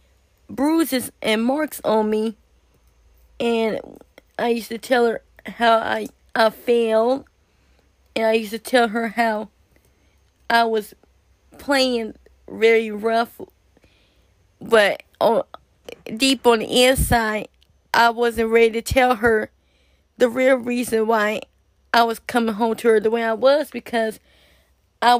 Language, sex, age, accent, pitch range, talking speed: English, female, 20-39, American, 220-245 Hz, 130 wpm